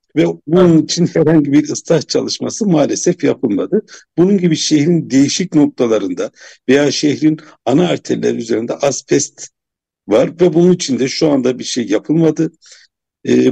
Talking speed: 140 wpm